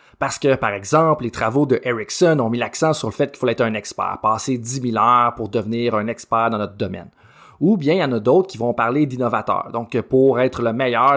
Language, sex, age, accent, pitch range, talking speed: French, male, 30-49, Canadian, 115-155 Hz, 245 wpm